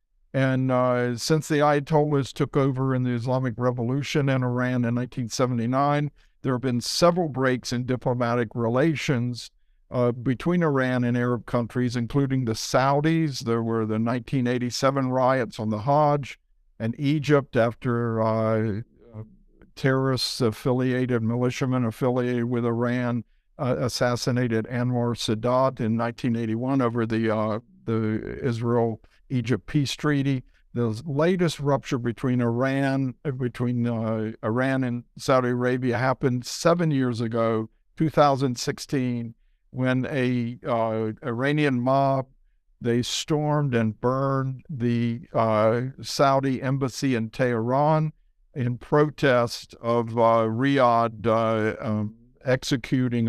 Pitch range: 115-135 Hz